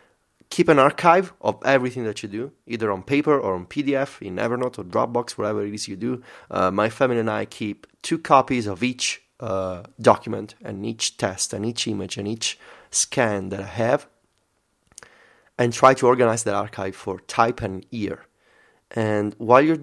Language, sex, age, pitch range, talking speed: English, male, 30-49, 105-130 Hz, 180 wpm